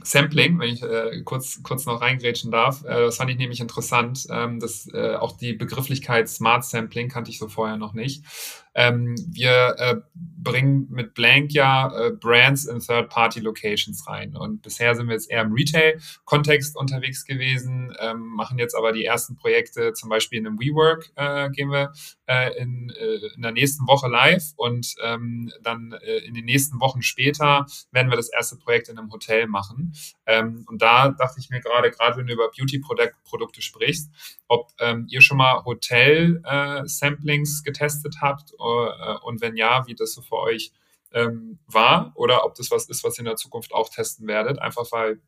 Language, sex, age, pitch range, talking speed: German, male, 30-49, 115-140 Hz, 185 wpm